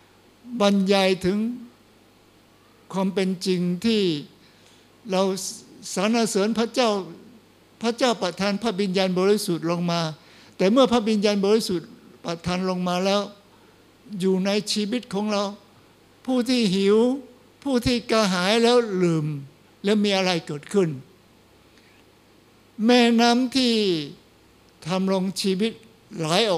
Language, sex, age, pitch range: Thai, male, 60-79, 180-235 Hz